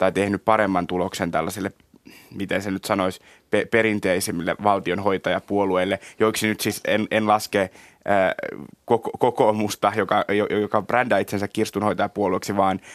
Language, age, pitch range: Finnish, 20-39, 90-105 Hz